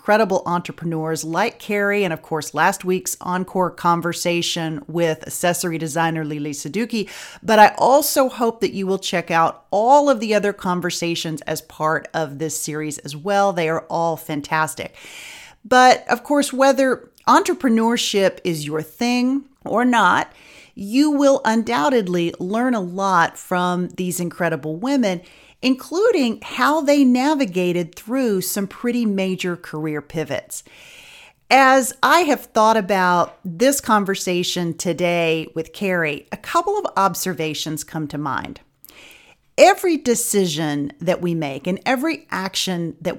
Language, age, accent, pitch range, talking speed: English, 40-59, American, 170-245 Hz, 135 wpm